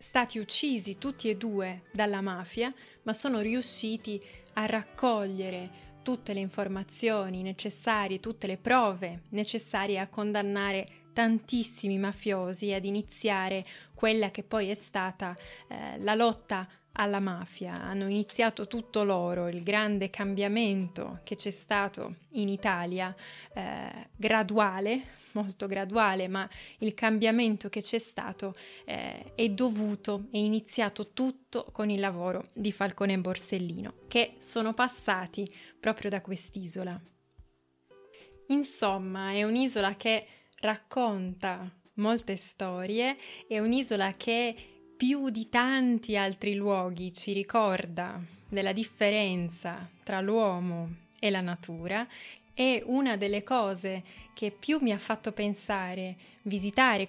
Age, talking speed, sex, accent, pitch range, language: 20-39, 120 wpm, female, native, 195-225 Hz, Italian